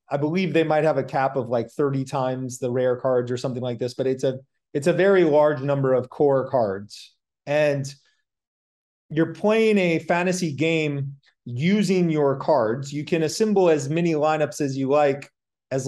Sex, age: male, 30-49